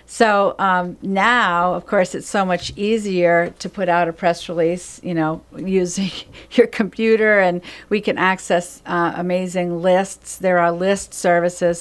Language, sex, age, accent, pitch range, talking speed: English, female, 50-69, American, 170-195 Hz, 160 wpm